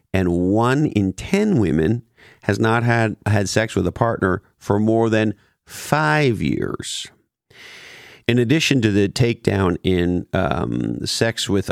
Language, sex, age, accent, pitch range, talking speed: English, male, 50-69, American, 95-115 Hz, 140 wpm